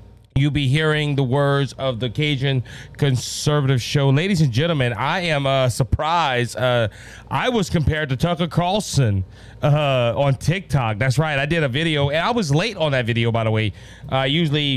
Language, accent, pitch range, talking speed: English, American, 125-155 Hz, 185 wpm